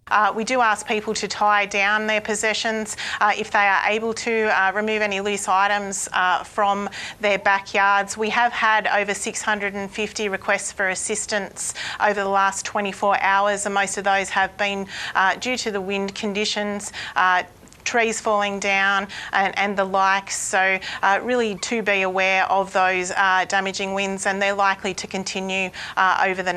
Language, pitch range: Bulgarian, 195-225 Hz